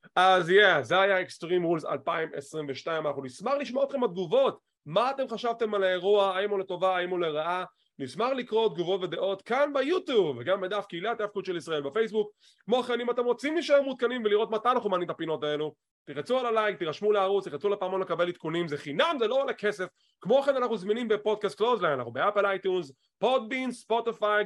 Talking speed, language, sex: 140 wpm, English, male